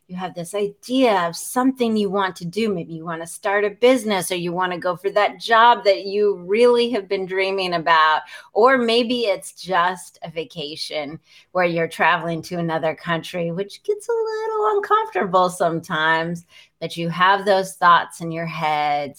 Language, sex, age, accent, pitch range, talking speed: English, female, 30-49, American, 165-210 Hz, 180 wpm